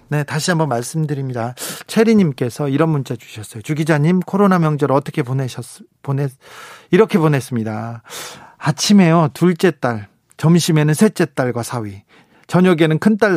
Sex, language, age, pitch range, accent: male, Korean, 40-59, 135-185 Hz, native